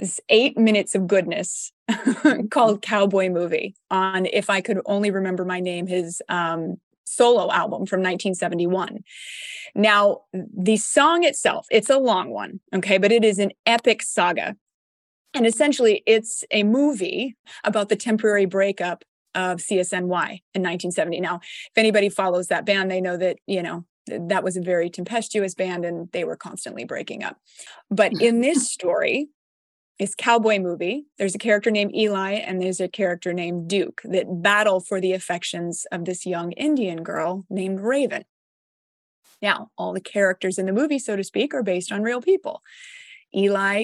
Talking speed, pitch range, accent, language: 160 wpm, 185-225 Hz, American, English